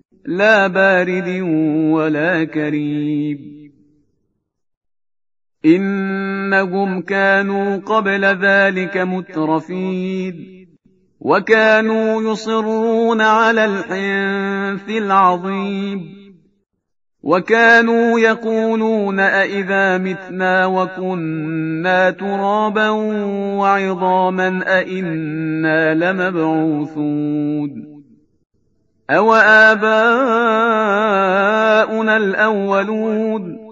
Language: Persian